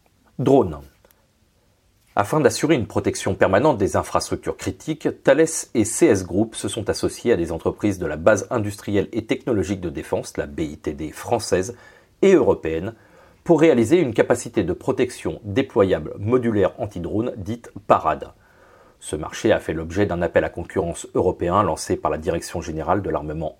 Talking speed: 155 wpm